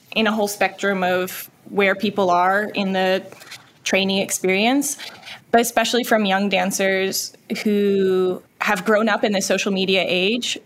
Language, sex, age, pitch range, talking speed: English, female, 20-39, 190-215 Hz, 145 wpm